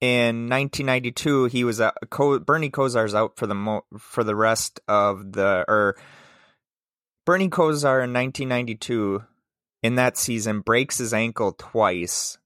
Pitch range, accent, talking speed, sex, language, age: 110-135 Hz, American, 145 wpm, male, English, 20-39